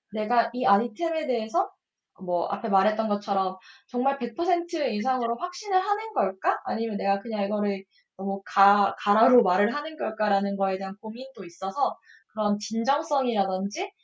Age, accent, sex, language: 20-39, native, female, Korean